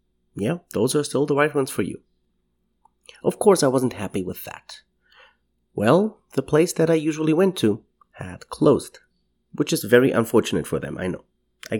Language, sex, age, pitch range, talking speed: English, male, 30-49, 95-150 Hz, 180 wpm